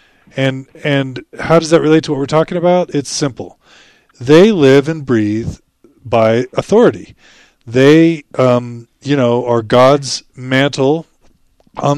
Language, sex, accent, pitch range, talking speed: English, male, American, 120-145 Hz, 135 wpm